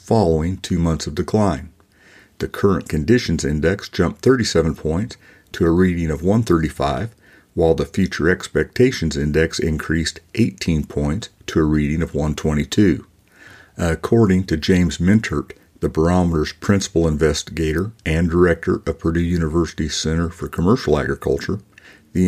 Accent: American